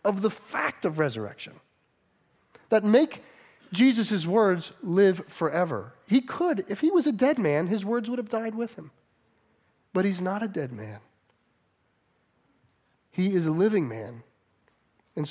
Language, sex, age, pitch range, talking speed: English, male, 40-59, 140-195 Hz, 150 wpm